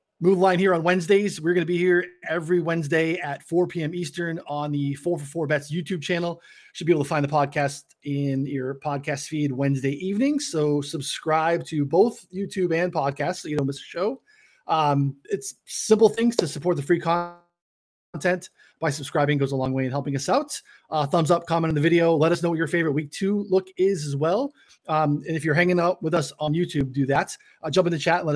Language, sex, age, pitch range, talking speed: English, male, 20-39, 145-180 Hz, 230 wpm